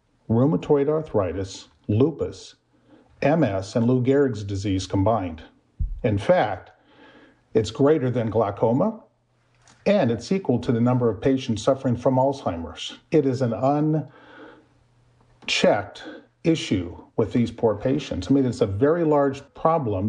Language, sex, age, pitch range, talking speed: English, male, 40-59, 105-140 Hz, 125 wpm